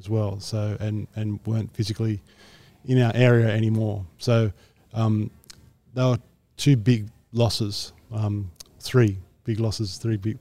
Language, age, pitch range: English, 20-39, 105-115 Hz